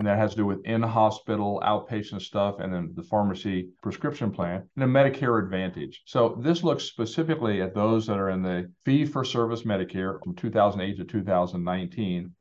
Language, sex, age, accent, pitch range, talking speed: English, male, 50-69, American, 100-130 Hz, 170 wpm